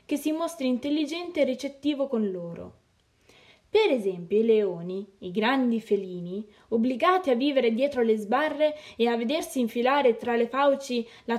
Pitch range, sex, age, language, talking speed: 205-280 Hz, female, 20-39, Italian, 155 wpm